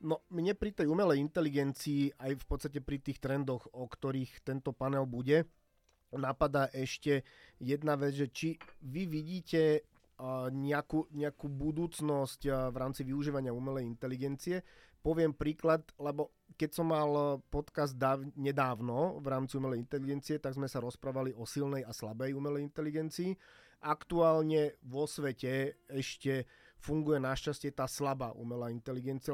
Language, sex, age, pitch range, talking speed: Slovak, male, 30-49, 135-150 Hz, 135 wpm